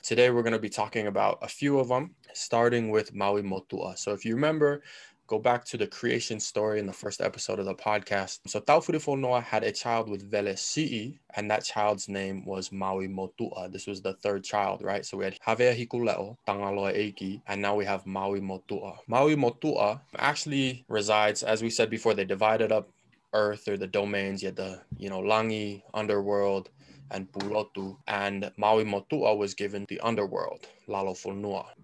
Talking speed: 185 wpm